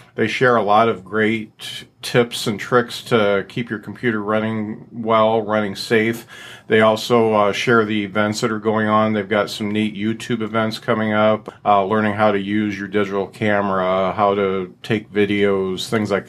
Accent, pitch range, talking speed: American, 105-115 Hz, 180 wpm